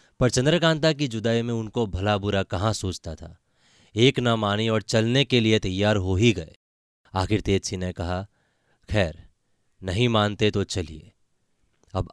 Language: Hindi